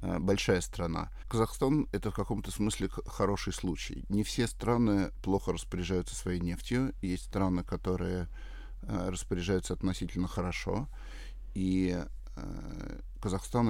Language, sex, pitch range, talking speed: Russian, male, 90-100 Hz, 105 wpm